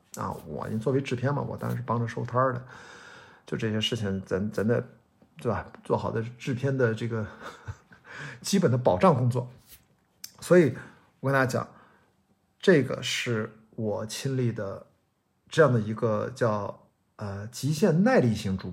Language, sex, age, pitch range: Chinese, male, 50-69, 105-135 Hz